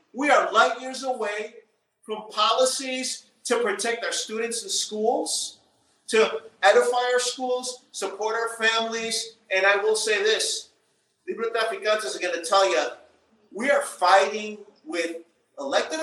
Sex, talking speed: male, 135 wpm